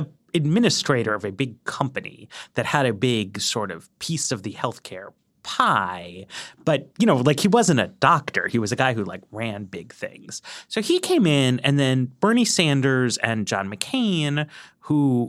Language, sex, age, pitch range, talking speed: English, male, 30-49, 110-165 Hz, 175 wpm